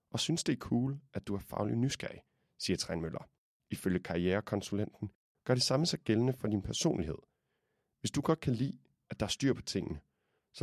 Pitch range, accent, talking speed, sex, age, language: 95-125 Hz, native, 190 wpm, male, 30-49, Danish